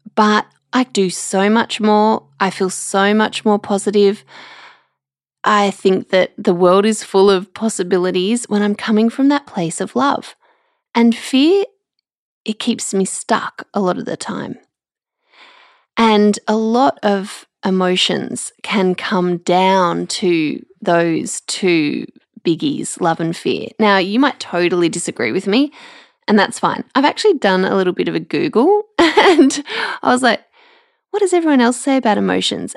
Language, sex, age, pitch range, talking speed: English, female, 20-39, 190-275 Hz, 155 wpm